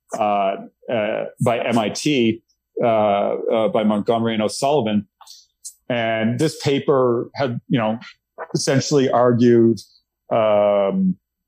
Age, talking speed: 40-59, 100 wpm